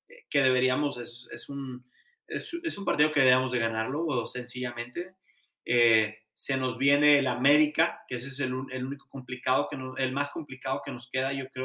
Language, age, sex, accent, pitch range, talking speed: Spanish, 30-49, male, Mexican, 130-150 Hz, 195 wpm